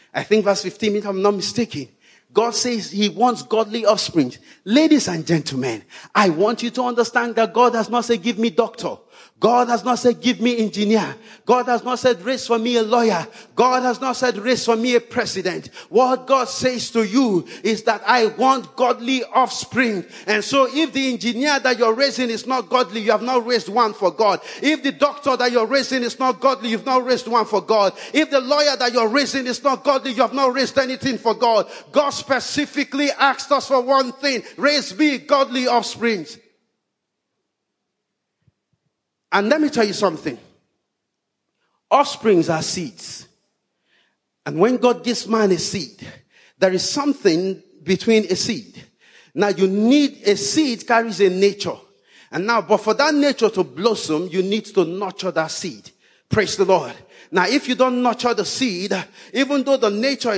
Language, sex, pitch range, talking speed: English, male, 210-260 Hz, 185 wpm